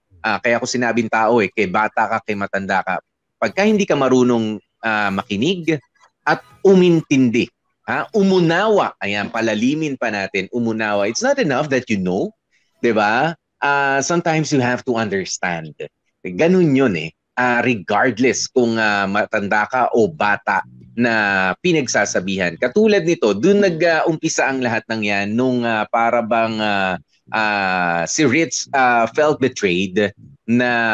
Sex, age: male, 30-49